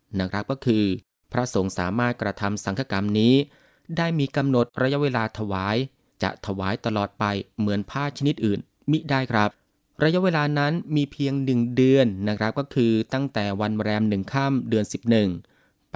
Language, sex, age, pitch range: Thai, male, 20-39, 105-135 Hz